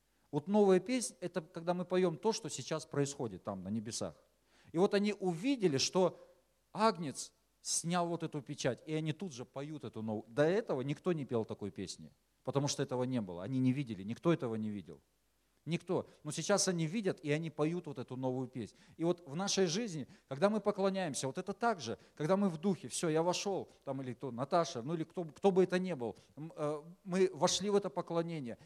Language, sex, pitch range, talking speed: Russian, male, 135-185 Hz, 205 wpm